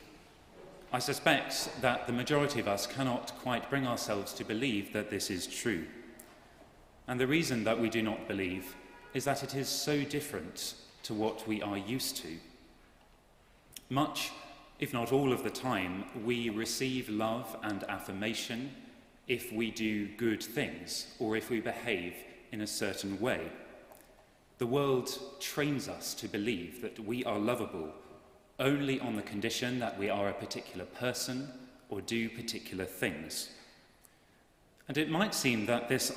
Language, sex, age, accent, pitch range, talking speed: English, male, 30-49, British, 105-130 Hz, 155 wpm